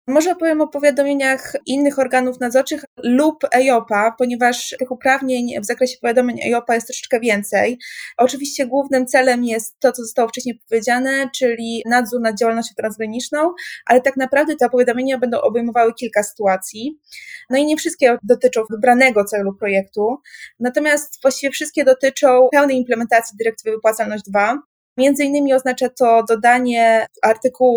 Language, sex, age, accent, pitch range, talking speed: Polish, female, 20-39, native, 225-255 Hz, 145 wpm